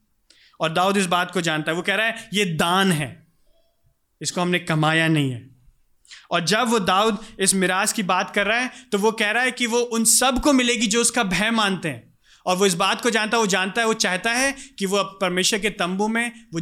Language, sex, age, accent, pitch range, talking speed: Hindi, male, 30-49, native, 155-215 Hz, 240 wpm